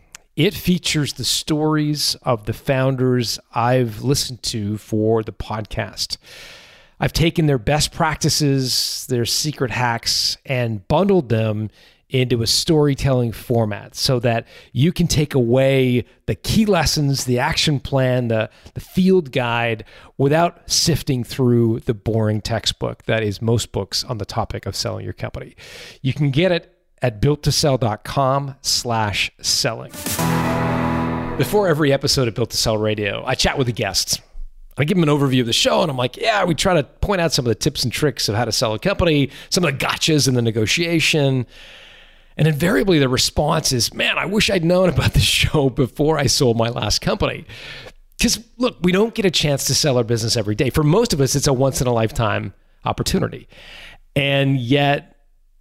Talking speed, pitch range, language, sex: 175 wpm, 115-150 Hz, English, male